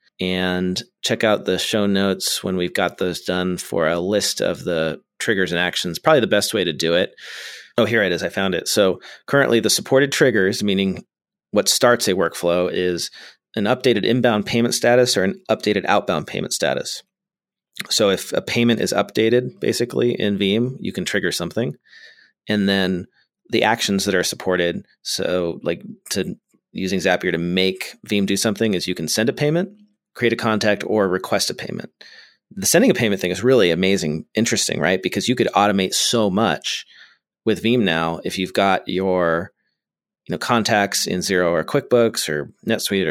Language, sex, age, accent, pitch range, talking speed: English, male, 30-49, American, 90-115 Hz, 180 wpm